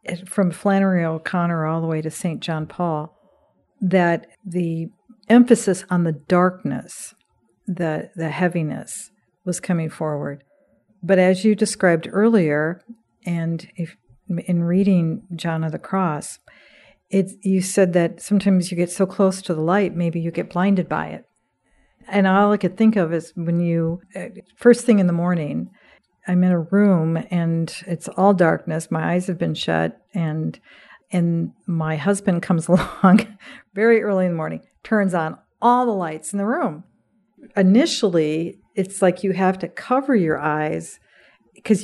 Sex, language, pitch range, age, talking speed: female, English, 165-200 Hz, 50-69, 155 wpm